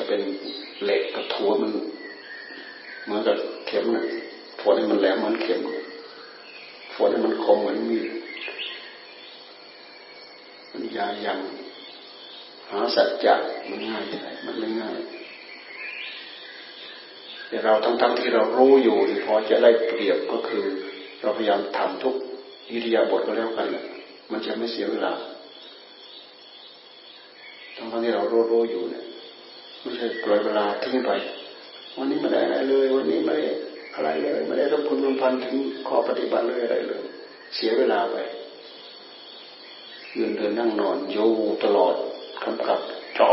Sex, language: male, Thai